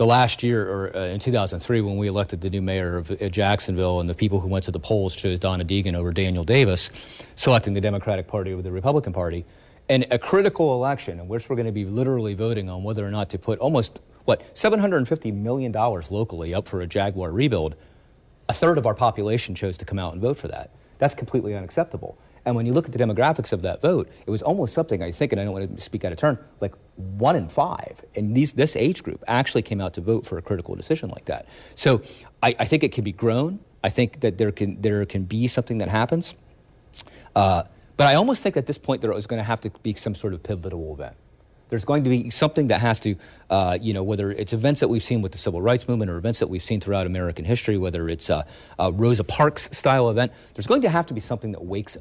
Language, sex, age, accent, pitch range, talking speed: English, male, 40-59, American, 95-120 Hz, 240 wpm